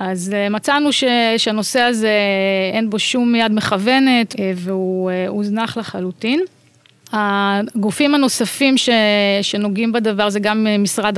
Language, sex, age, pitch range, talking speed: Hebrew, female, 30-49, 195-230 Hz, 115 wpm